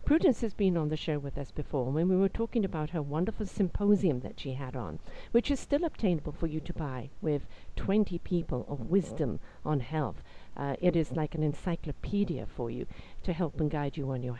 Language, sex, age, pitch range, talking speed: English, female, 50-69, 155-210 Hz, 215 wpm